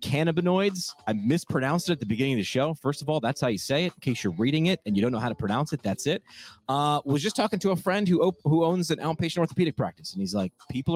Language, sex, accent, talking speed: English, male, American, 285 wpm